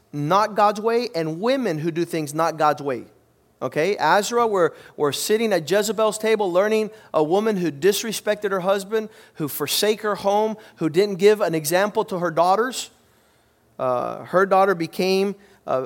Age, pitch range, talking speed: 40-59, 175-230 Hz, 165 wpm